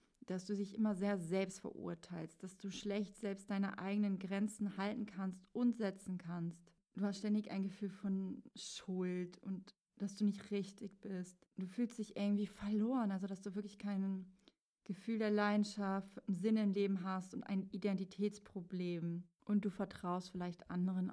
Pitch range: 195-215 Hz